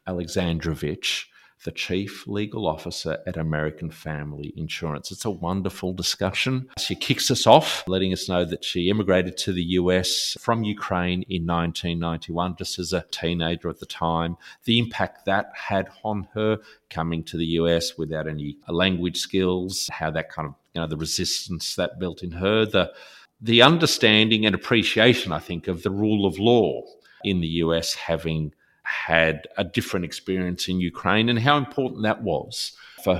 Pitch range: 85-105 Hz